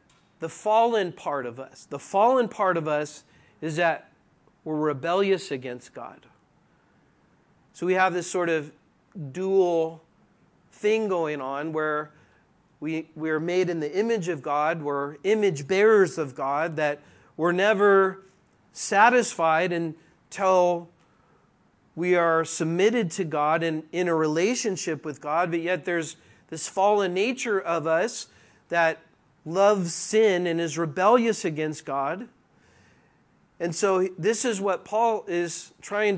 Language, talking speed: English, 135 wpm